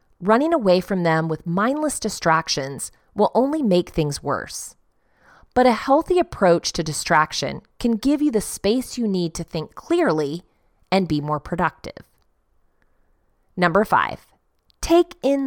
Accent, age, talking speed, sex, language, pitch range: American, 30-49, 140 wpm, female, English, 170-260 Hz